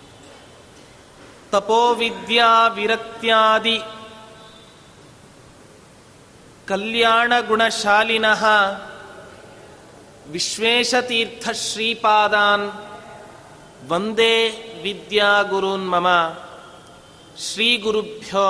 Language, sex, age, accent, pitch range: Kannada, male, 30-49, native, 200-230 Hz